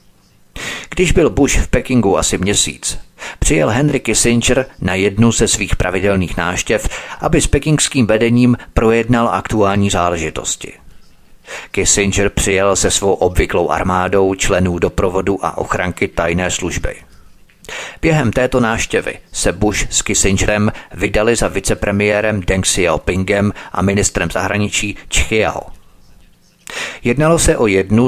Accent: native